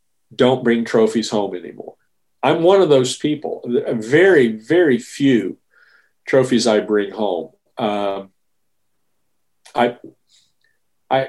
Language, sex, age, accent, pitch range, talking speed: English, male, 50-69, American, 115-195 Hz, 105 wpm